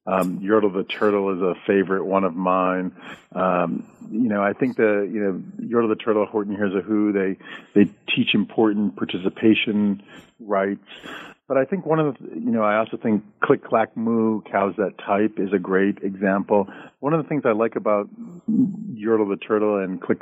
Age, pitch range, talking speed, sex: 50-69, 95-110 Hz, 190 wpm, male